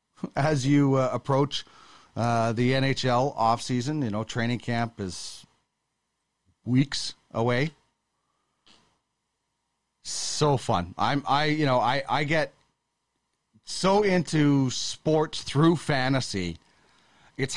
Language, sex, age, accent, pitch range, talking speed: English, male, 40-59, American, 130-175 Hz, 105 wpm